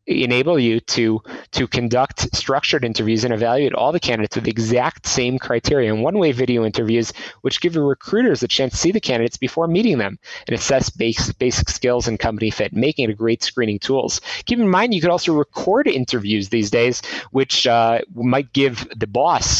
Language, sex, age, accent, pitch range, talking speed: English, male, 30-49, American, 110-135 Hz, 195 wpm